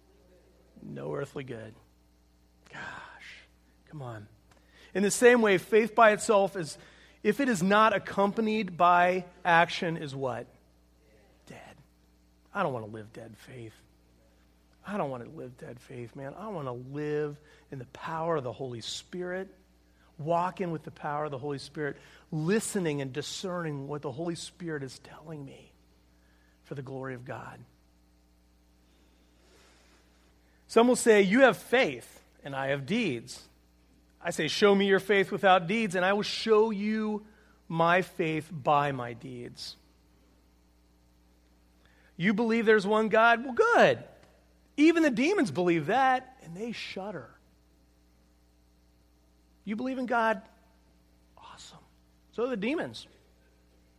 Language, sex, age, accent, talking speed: English, male, 40-59, American, 140 wpm